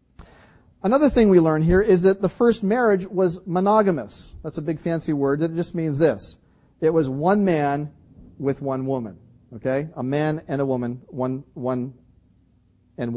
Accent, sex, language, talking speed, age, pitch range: American, male, English, 170 wpm, 40-59, 135-185 Hz